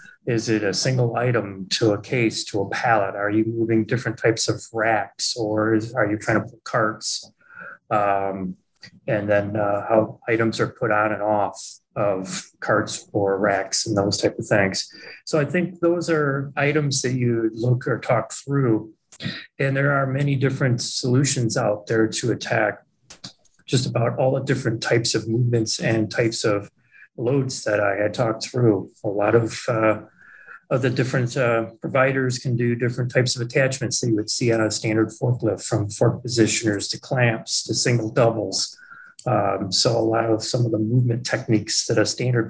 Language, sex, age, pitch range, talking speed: English, male, 30-49, 110-130 Hz, 180 wpm